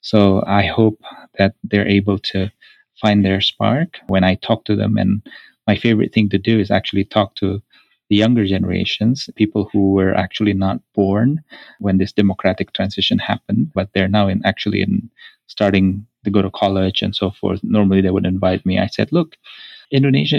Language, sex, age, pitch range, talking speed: English, male, 30-49, 95-110 Hz, 175 wpm